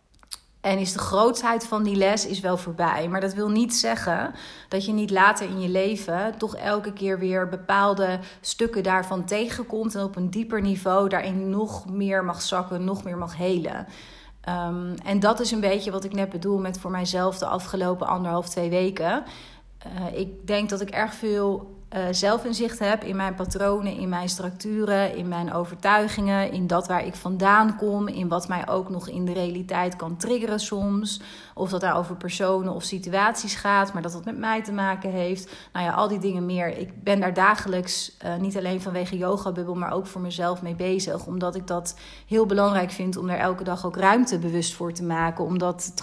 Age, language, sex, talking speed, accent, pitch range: 30-49, Dutch, female, 200 wpm, Dutch, 180-200 Hz